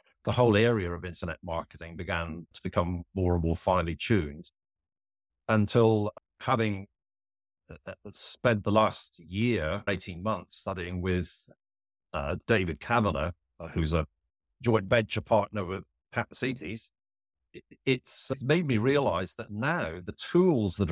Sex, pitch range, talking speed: male, 85-110 Hz, 130 wpm